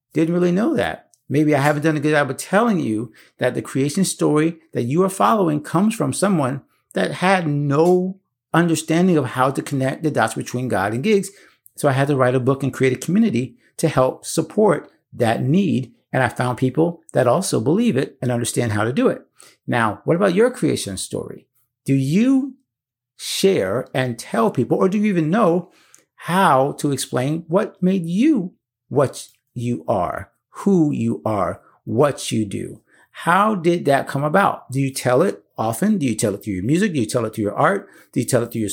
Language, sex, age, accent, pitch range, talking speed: English, male, 50-69, American, 125-180 Hz, 205 wpm